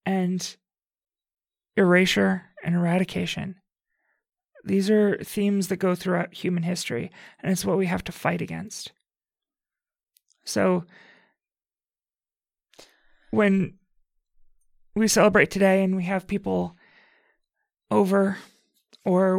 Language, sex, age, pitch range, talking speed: English, male, 30-49, 185-220 Hz, 95 wpm